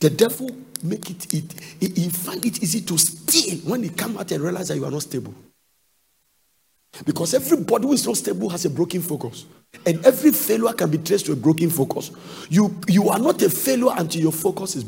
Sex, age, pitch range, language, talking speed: male, 50-69, 155-205 Hz, English, 210 wpm